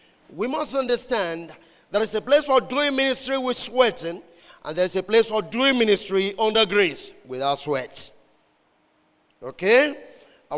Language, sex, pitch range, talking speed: English, male, 185-250 Hz, 145 wpm